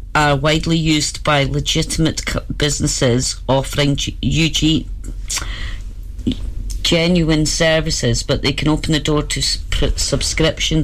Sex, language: female, English